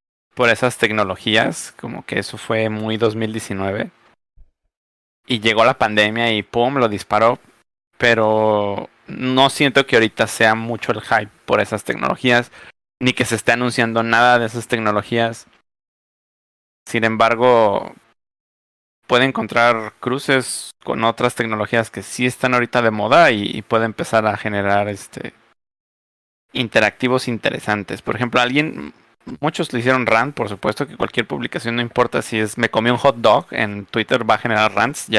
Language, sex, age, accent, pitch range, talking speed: Spanish, male, 30-49, Mexican, 105-125 Hz, 150 wpm